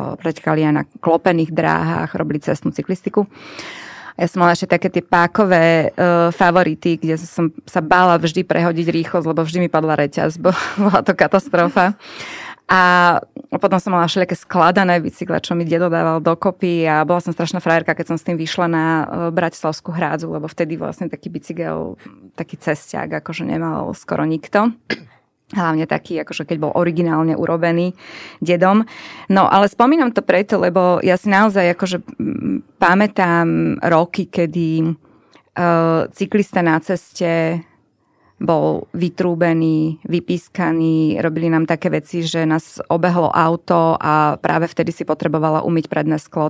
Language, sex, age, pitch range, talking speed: Slovak, female, 20-39, 160-180 Hz, 145 wpm